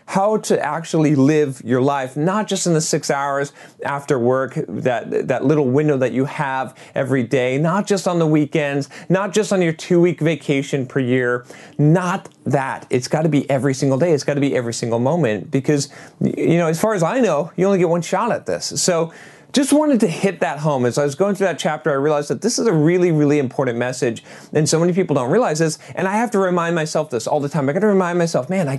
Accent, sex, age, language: American, male, 30-49, English